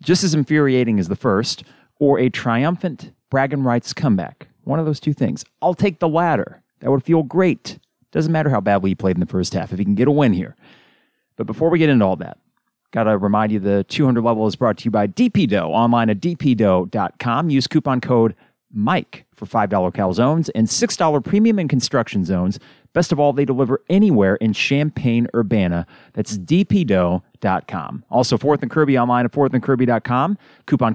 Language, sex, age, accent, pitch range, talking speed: English, male, 30-49, American, 105-145 Hz, 190 wpm